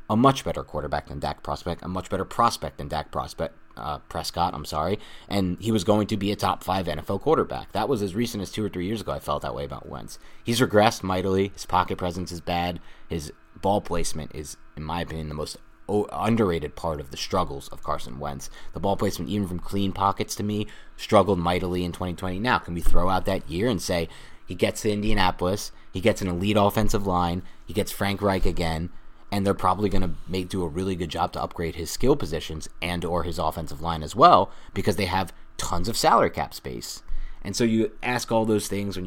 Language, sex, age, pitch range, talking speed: English, male, 30-49, 85-105 Hz, 225 wpm